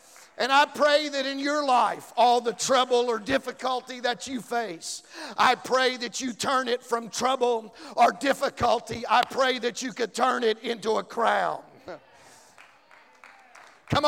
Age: 50-69